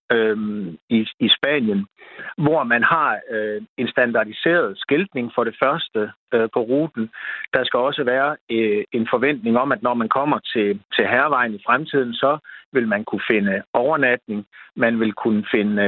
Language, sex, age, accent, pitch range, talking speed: Danish, male, 60-79, native, 110-145 Hz, 165 wpm